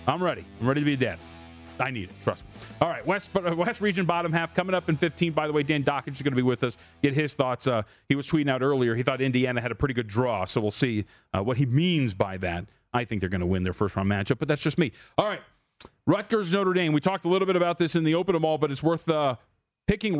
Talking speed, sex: 285 wpm, male